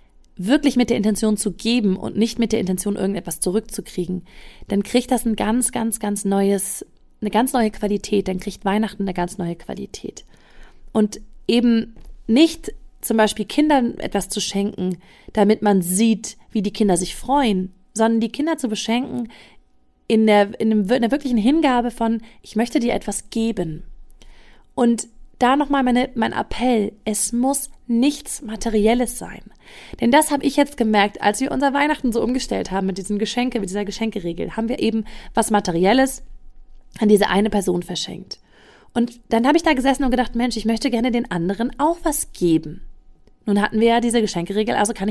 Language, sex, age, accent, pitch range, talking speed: German, female, 30-49, German, 200-245 Hz, 175 wpm